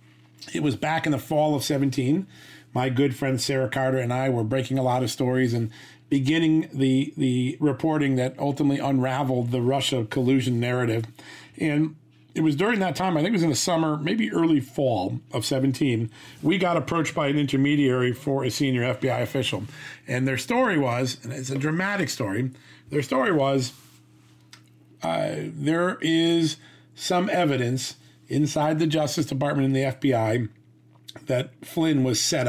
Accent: American